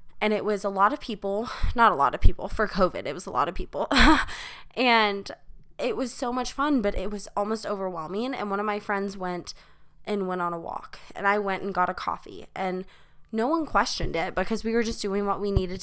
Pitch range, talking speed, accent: 180-215 Hz, 235 wpm, American